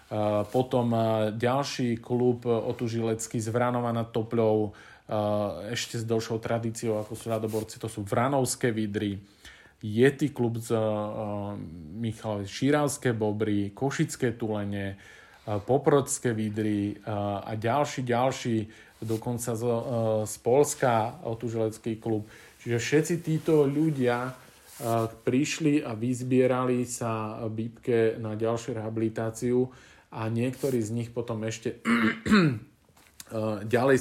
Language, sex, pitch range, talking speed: Slovak, male, 110-120 Hz, 110 wpm